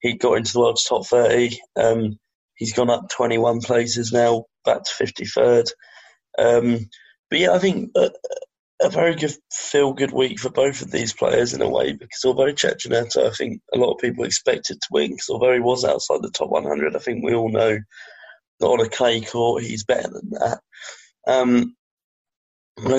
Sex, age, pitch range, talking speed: male, 20-39, 115-125 Hz, 185 wpm